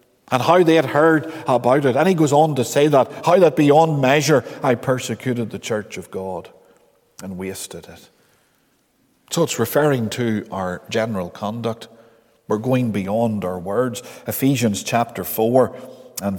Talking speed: 155 wpm